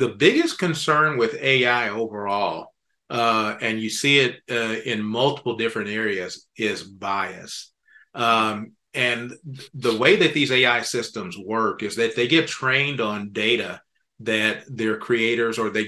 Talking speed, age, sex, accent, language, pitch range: 145 wpm, 40-59, male, American, English, 110-125 Hz